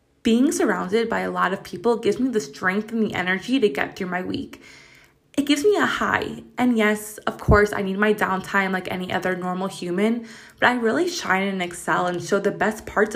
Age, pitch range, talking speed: 20-39, 185-230 Hz, 220 wpm